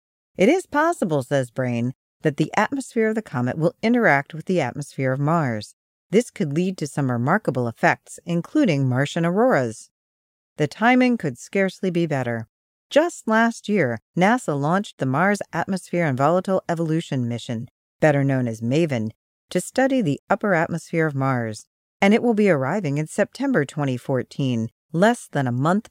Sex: female